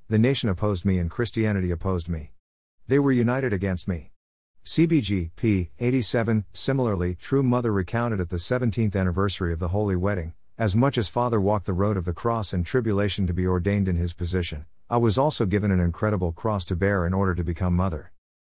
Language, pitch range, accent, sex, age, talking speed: English, 90-115 Hz, American, male, 50-69, 195 wpm